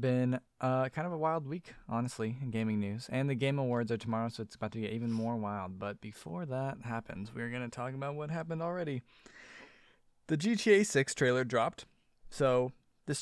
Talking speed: 200 wpm